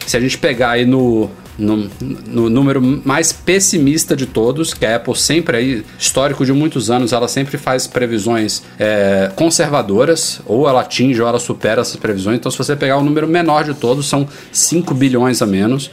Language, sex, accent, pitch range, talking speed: Portuguese, male, Brazilian, 110-135 Hz, 190 wpm